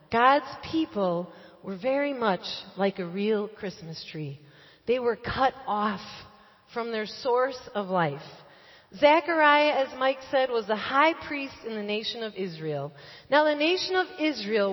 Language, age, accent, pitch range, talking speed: English, 40-59, American, 205-300 Hz, 150 wpm